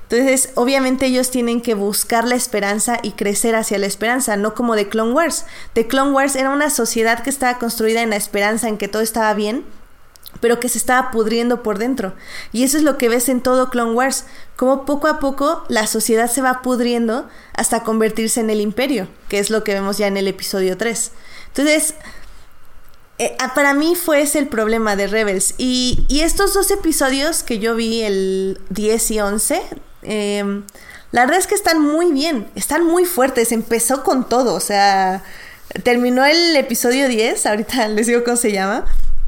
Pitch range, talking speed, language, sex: 220-275 Hz, 190 wpm, Spanish, female